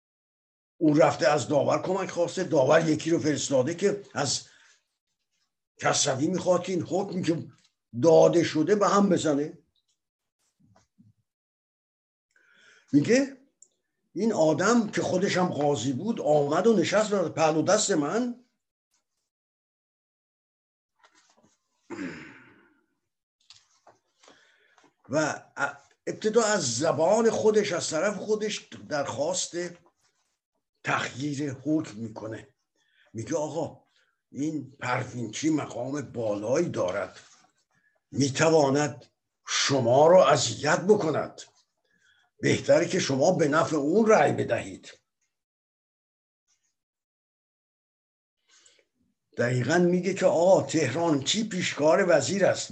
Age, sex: 50-69, male